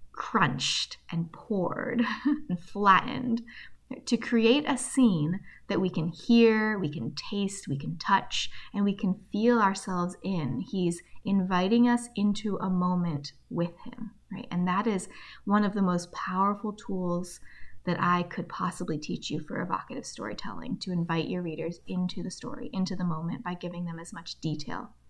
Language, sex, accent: English, female, American